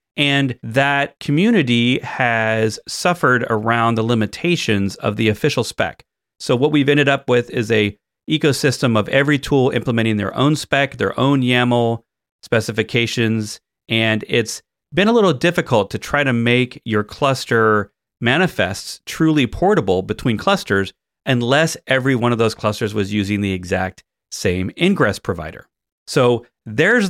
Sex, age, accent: male, 40-59, American